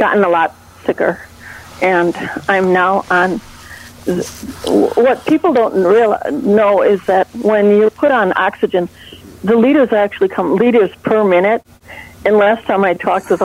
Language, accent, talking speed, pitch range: English, American, 145 wpm, 185-215 Hz